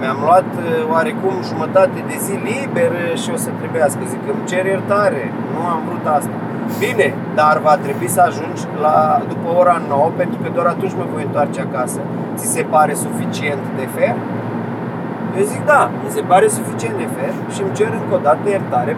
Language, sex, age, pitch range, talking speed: Romanian, male, 30-49, 185-225 Hz, 185 wpm